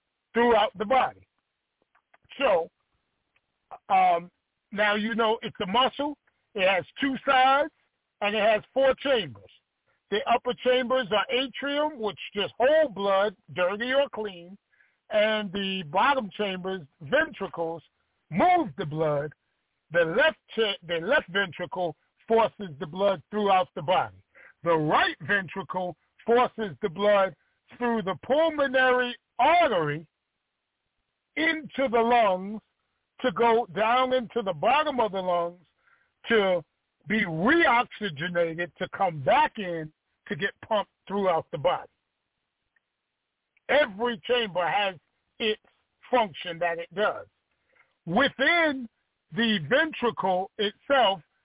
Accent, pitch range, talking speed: American, 185-255 Hz, 115 wpm